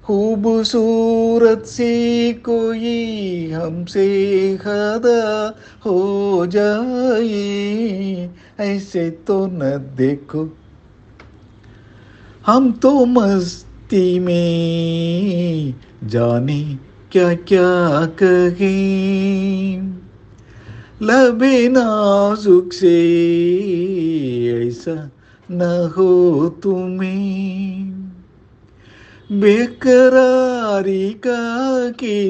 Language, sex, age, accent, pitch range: Tamil, male, 50-69, native, 160-210 Hz